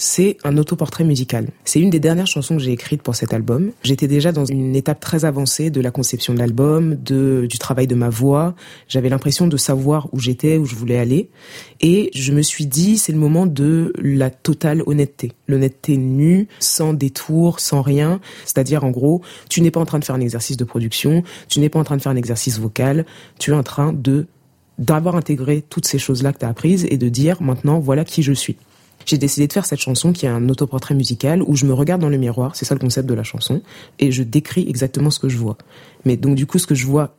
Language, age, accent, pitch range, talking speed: French, 20-39, French, 130-160 Hz, 240 wpm